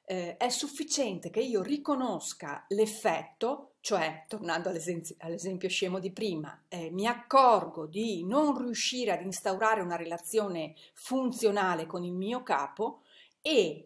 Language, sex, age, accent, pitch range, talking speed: Italian, female, 40-59, native, 175-235 Hz, 120 wpm